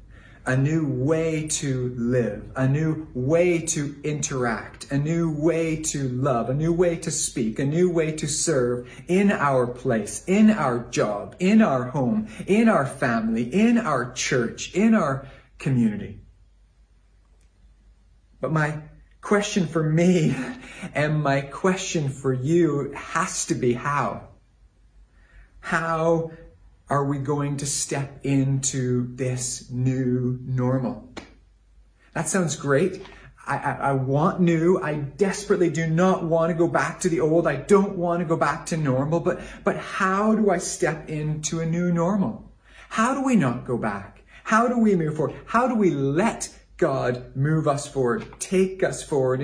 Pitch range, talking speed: 130-170 Hz, 150 wpm